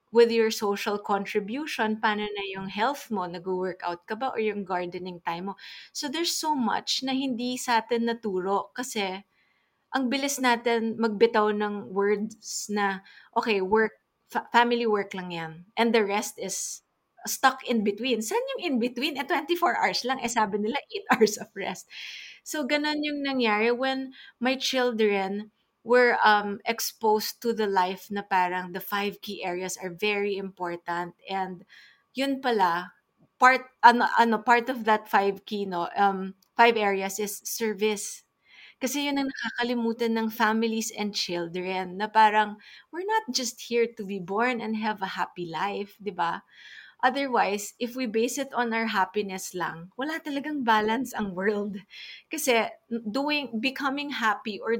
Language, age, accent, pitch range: English, 20-39, Filipino, 200-250 Hz